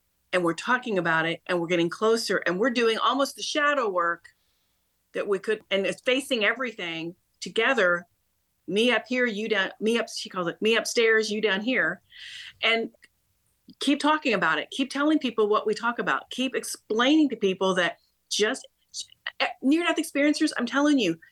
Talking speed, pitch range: 175 wpm, 195-250 Hz